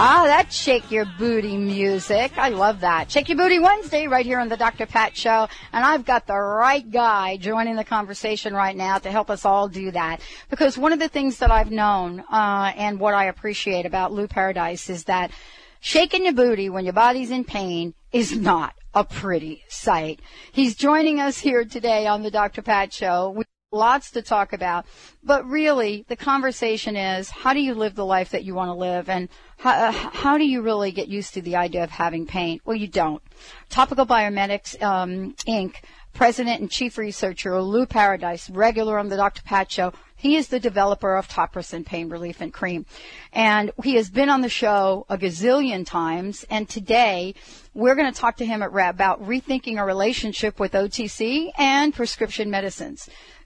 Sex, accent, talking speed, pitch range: female, American, 195 wpm, 190-245 Hz